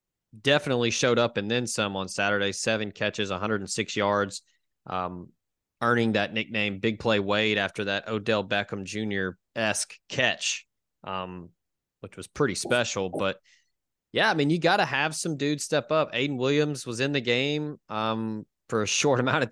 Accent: American